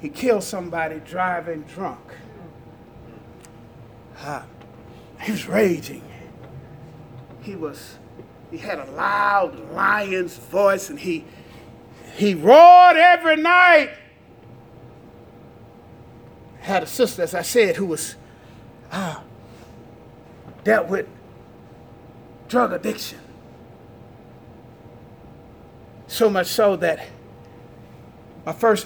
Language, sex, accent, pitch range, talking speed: English, male, American, 140-235 Hz, 85 wpm